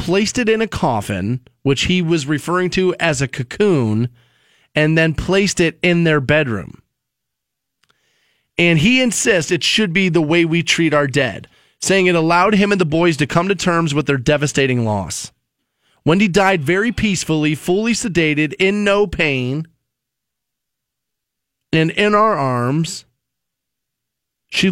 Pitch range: 125-175 Hz